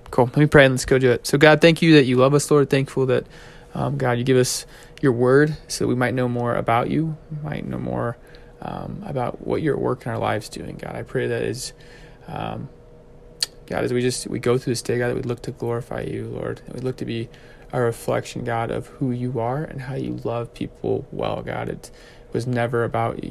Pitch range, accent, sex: 120-145 Hz, American, male